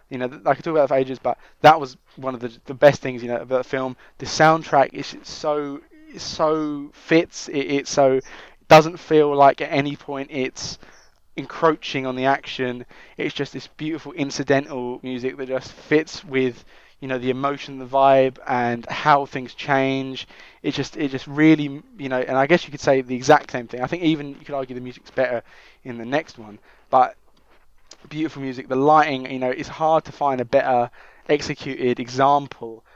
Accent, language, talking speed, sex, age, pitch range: British, English, 200 wpm, male, 20-39, 125-145 Hz